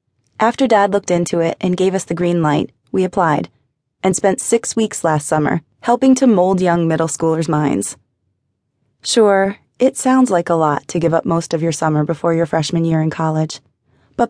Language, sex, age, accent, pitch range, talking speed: English, female, 20-39, American, 145-185 Hz, 195 wpm